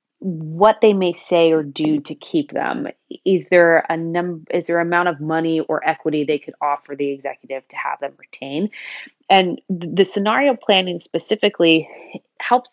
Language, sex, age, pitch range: English, female, 20-39, 145-180 Hz